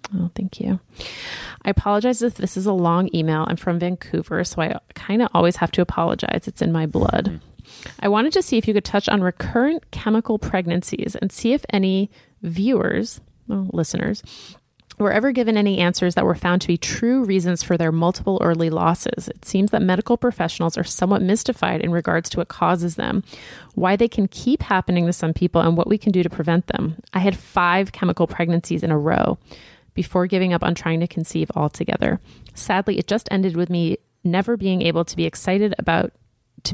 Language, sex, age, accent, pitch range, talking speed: English, female, 30-49, American, 170-210 Hz, 200 wpm